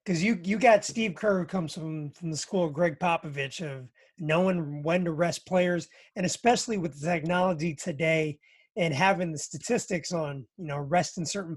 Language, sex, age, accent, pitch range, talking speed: English, male, 20-39, American, 165-205 Hz, 180 wpm